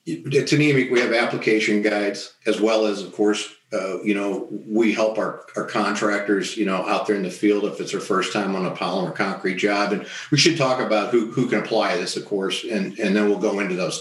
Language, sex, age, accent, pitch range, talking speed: English, male, 50-69, American, 100-115 Hz, 235 wpm